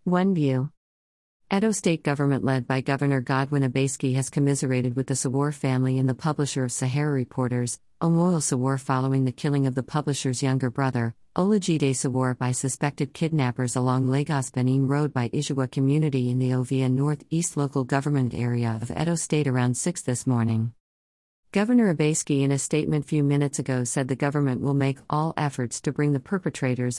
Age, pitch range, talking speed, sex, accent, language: 50-69, 130-150 Hz, 170 wpm, female, American, English